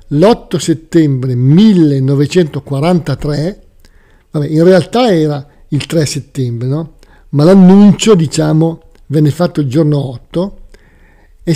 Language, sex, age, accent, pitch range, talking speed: Italian, male, 50-69, native, 145-195 Hz, 105 wpm